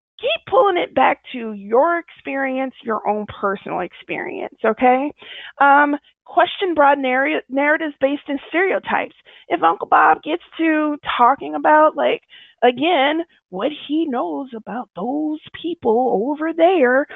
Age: 20-39